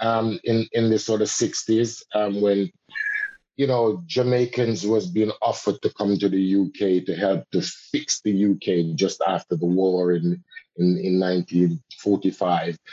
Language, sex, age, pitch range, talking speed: English, male, 50-69, 95-125 Hz, 160 wpm